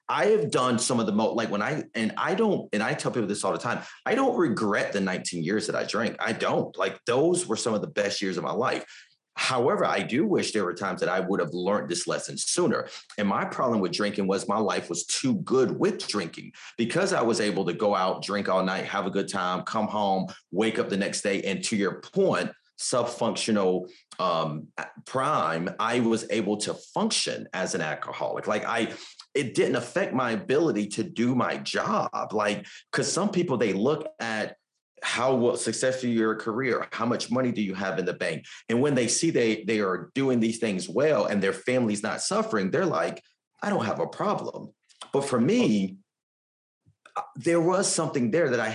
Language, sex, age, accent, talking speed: English, male, 30-49, American, 210 wpm